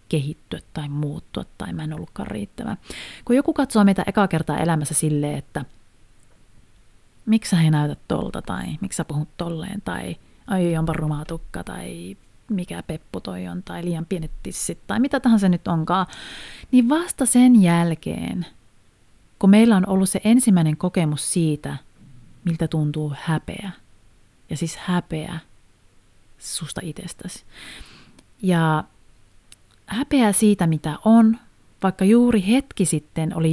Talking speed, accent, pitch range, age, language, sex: 130 wpm, native, 155-210 Hz, 30-49, Finnish, female